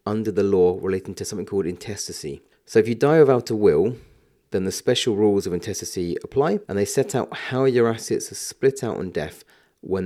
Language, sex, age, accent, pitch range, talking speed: English, male, 30-49, British, 95-145 Hz, 210 wpm